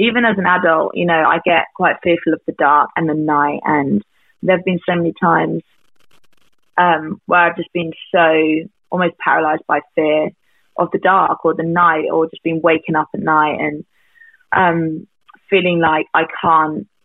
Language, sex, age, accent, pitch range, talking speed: English, female, 20-39, British, 155-185 Hz, 180 wpm